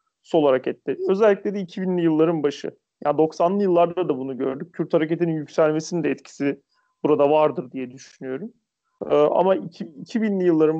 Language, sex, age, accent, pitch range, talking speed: Turkish, male, 40-59, native, 160-210 Hz, 150 wpm